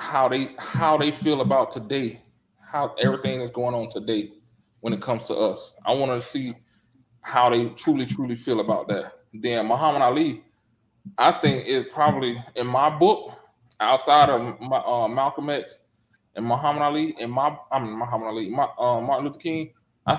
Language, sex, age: English, male, 20-39